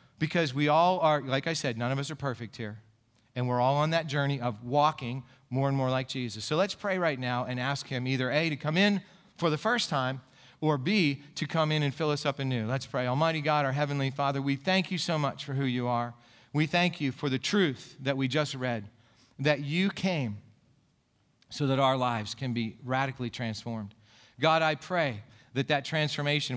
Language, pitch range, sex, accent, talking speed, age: English, 120-145 Hz, male, American, 215 wpm, 40-59